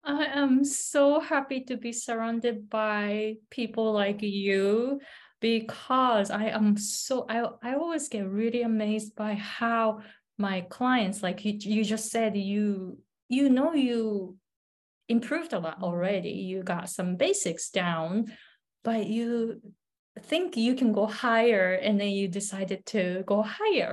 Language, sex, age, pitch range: Japanese, female, 20-39, 195-235 Hz